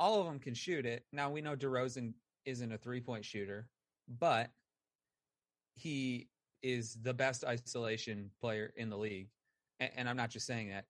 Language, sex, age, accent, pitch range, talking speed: English, male, 30-49, American, 105-130 Hz, 165 wpm